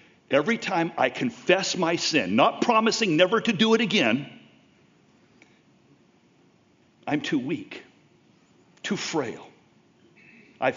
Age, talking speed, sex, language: 60-79, 105 wpm, male, English